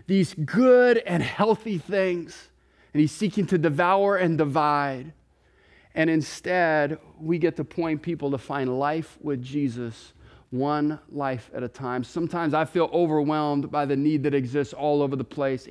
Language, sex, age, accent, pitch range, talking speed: English, male, 30-49, American, 120-155 Hz, 160 wpm